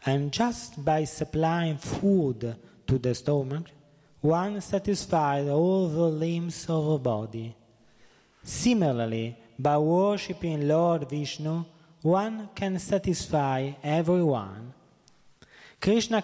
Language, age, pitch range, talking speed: Italian, 20-39, 145-185 Hz, 95 wpm